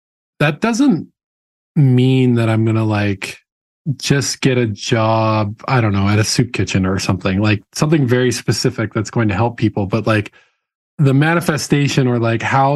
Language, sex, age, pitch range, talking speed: English, male, 20-39, 110-130 Hz, 175 wpm